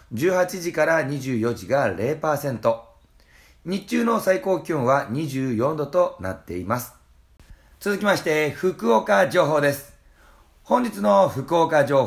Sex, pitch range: male, 120-185 Hz